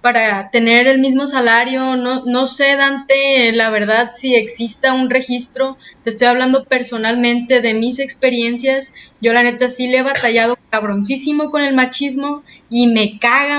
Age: 20-39